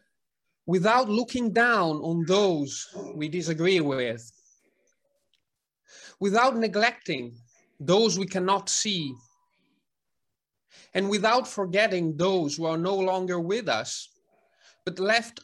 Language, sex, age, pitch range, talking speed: English, male, 30-49, 155-195 Hz, 100 wpm